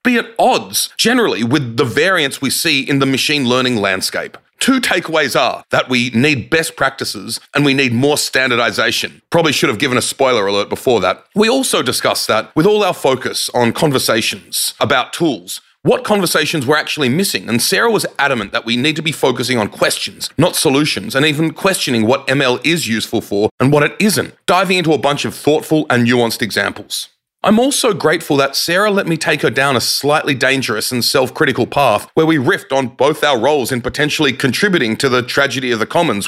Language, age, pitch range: English, 30-49, 120-160 Hz